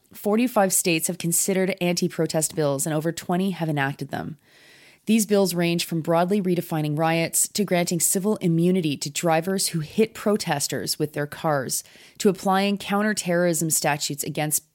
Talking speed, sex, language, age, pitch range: 145 wpm, female, English, 30-49, 150-185 Hz